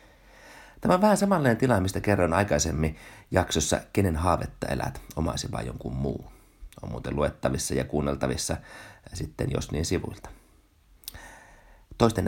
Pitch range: 80-115 Hz